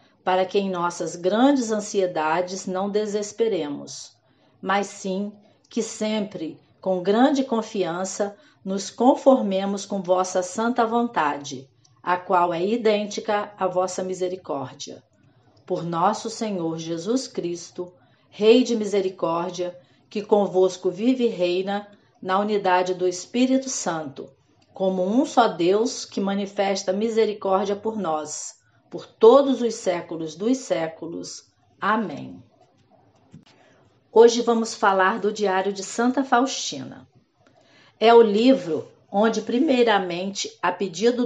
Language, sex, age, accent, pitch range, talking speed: Portuguese, female, 40-59, Brazilian, 185-225 Hz, 110 wpm